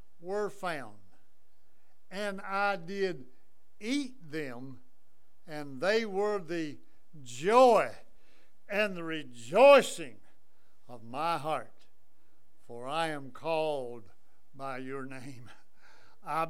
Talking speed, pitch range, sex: 95 wpm, 135-205 Hz, male